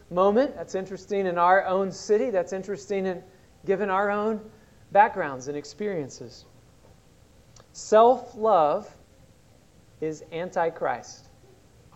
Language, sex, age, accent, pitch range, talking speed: English, male, 40-59, American, 165-215 Hz, 95 wpm